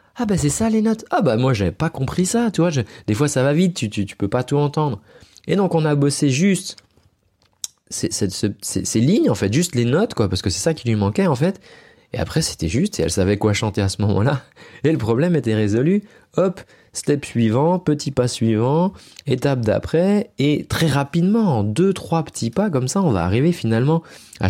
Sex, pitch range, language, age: male, 100-145 Hz, French, 30-49